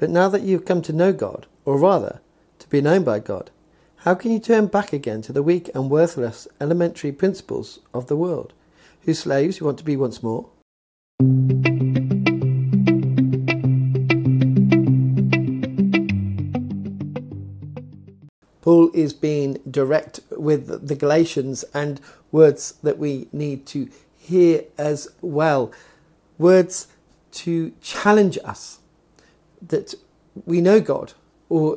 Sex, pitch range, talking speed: male, 135-175 Hz, 120 wpm